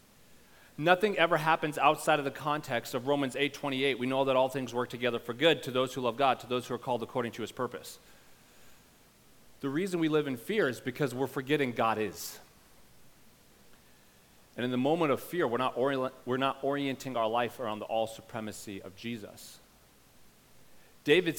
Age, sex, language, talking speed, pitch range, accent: 30-49, male, English, 180 wpm, 120-180 Hz, American